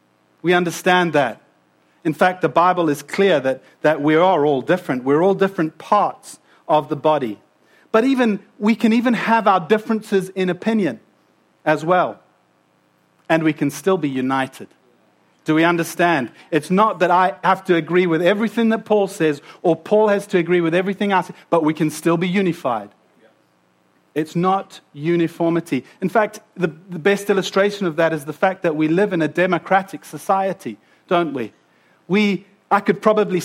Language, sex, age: English, male, 40-59